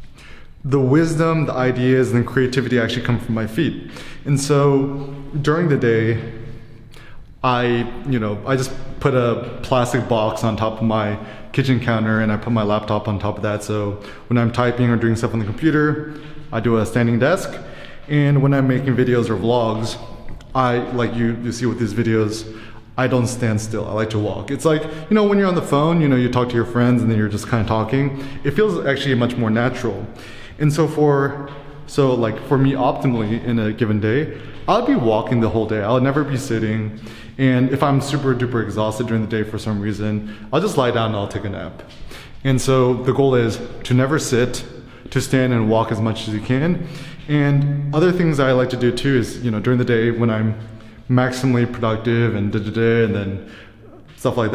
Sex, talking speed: male, 210 wpm